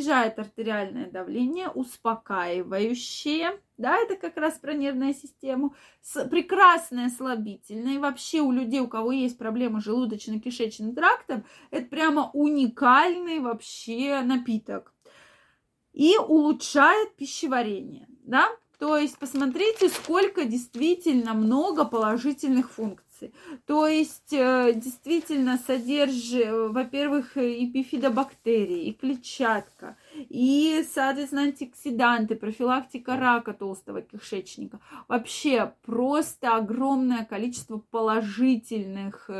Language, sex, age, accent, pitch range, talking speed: Russian, female, 20-39, native, 230-290 Hz, 90 wpm